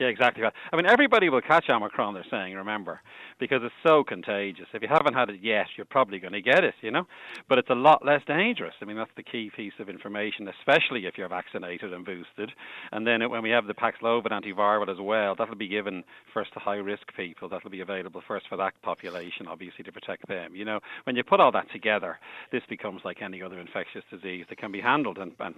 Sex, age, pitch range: male, 40-59, 100-120 Hz